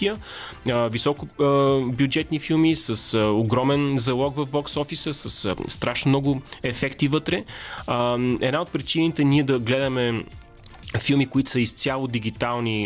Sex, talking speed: male, 115 wpm